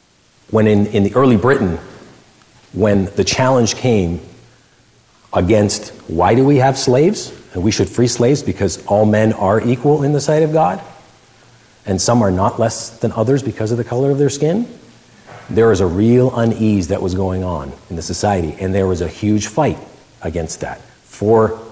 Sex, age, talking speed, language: male, 40-59, 180 wpm, English